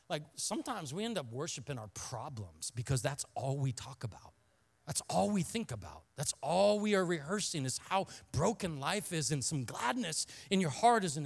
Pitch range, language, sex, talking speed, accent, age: 135-180 Hz, English, male, 195 wpm, American, 40-59